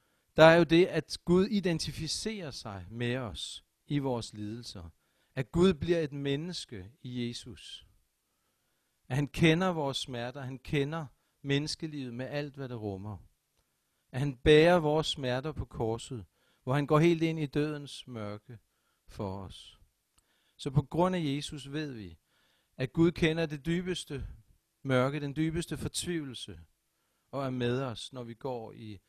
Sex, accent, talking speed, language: male, native, 155 wpm, Danish